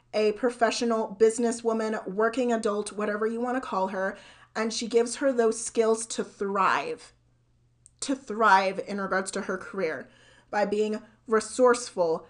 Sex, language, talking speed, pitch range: female, English, 140 wpm, 205-245 Hz